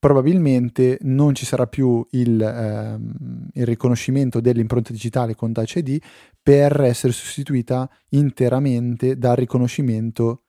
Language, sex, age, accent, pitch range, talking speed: Italian, male, 30-49, native, 115-135 Hz, 115 wpm